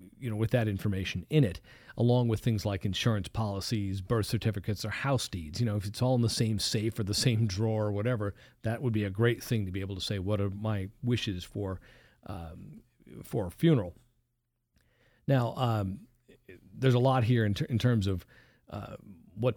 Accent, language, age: American, English, 40-59